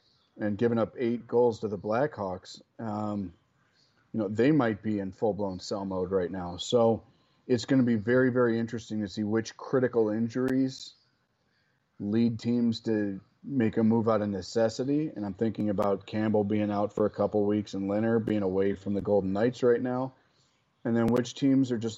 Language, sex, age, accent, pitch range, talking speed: English, male, 40-59, American, 100-115 Hz, 190 wpm